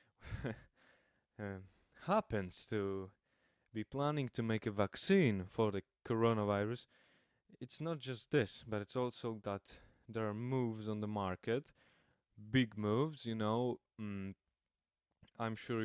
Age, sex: 20-39, male